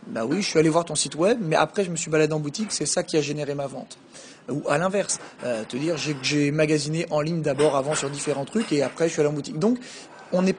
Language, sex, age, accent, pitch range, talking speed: French, male, 30-49, French, 155-195 Hz, 300 wpm